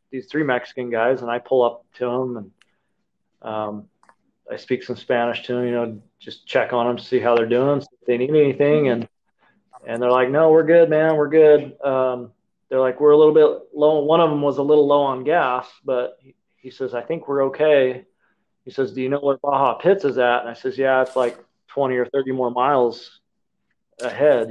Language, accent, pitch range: English, American, 125-145 Hz